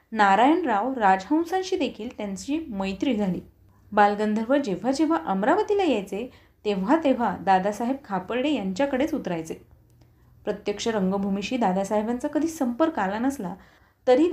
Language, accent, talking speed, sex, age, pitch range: Marathi, native, 105 wpm, female, 30-49, 200-275 Hz